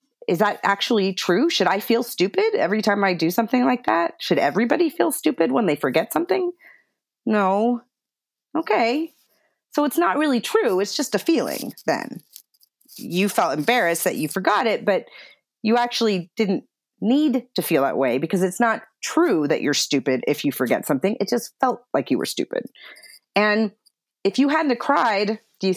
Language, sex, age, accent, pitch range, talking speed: English, female, 30-49, American, 185-250 Hz, 175 wpm